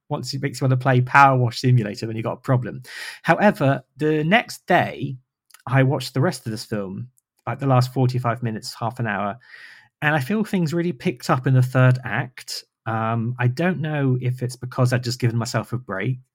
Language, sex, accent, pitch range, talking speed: English, male, British, 115-135 Hz, 215 wpm